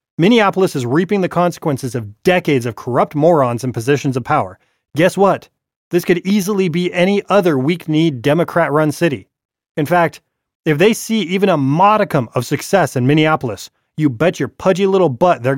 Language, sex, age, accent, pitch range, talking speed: English, male, 30-49, American, 125-180 Hz, 170 wpm